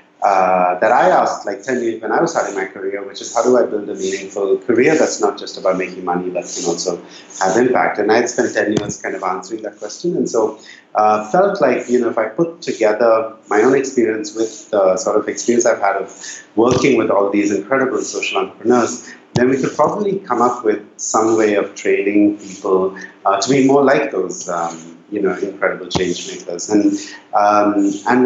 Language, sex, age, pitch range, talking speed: English, male, 30-49, 95-130 Hz, 210 wpm